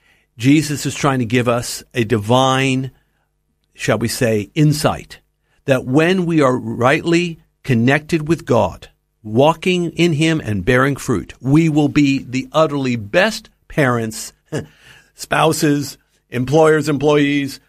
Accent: American